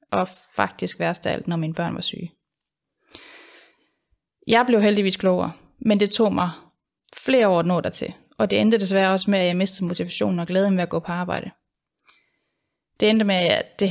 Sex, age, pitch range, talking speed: female, 30-49, 185-220 Hz, 195 wpm